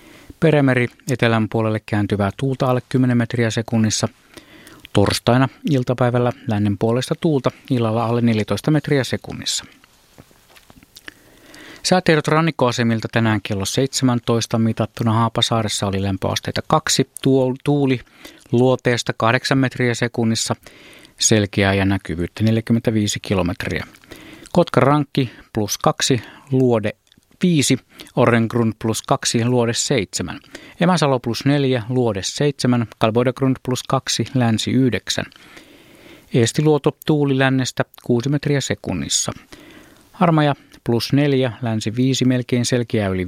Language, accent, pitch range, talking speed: Finnish, native, 110-130 Hz, 100 wpm